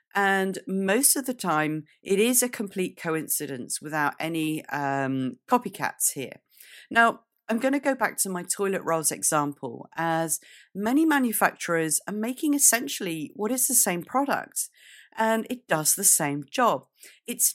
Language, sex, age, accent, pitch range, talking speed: English, female, 40-59, British, 160-240 Hz, 150 wpm